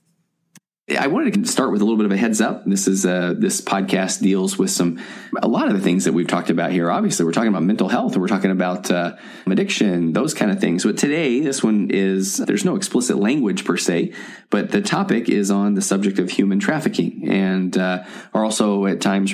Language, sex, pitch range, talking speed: English, male, 95-110 Hz, 225 wpm